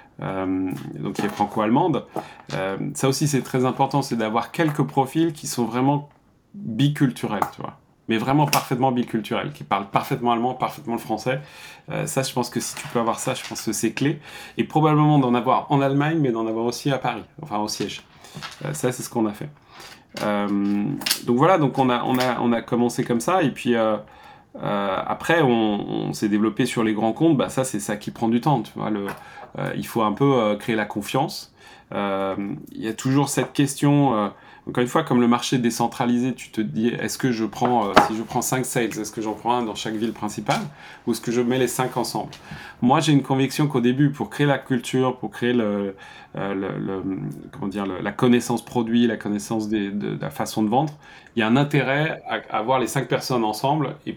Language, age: English, 30-49